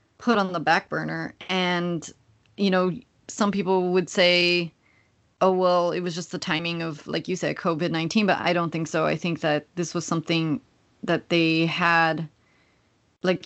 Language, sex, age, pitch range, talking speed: English, female, 30-49, 160-185 Hz, 175 wpm